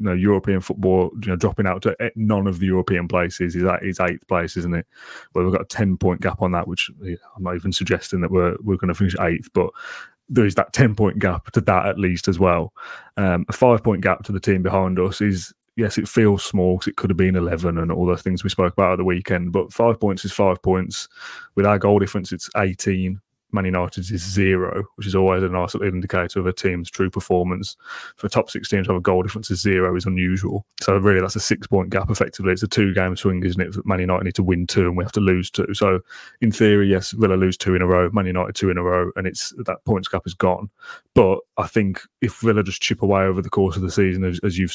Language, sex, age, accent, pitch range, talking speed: English, male, 20-39, British, 90-100 Hz, 255 wpm